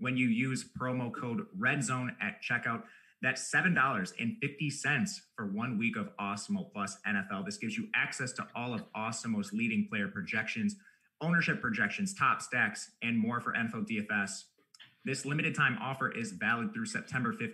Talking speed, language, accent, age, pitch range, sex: 150 wpm, English, American, 30-49, 130-210 Hz, male